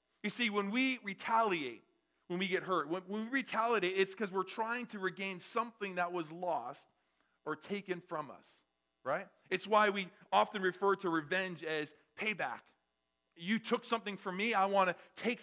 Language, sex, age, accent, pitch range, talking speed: English, male, 40-59, American, 170-210 Hz, 175 wpm